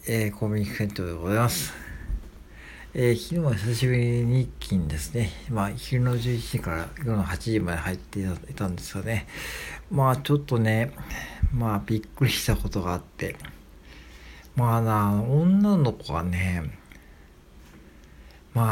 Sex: male